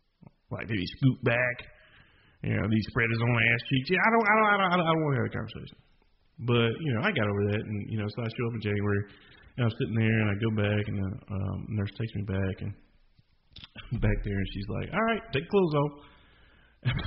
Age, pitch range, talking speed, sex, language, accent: 30-49, 105-145 Hz, 255 wpm, male, English, American